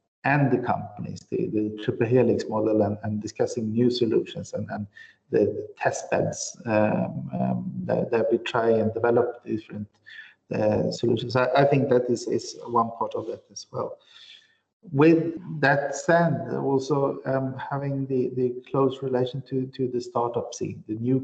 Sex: male